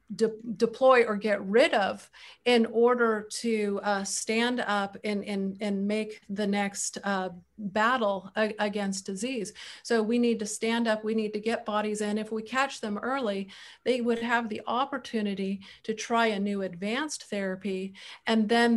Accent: American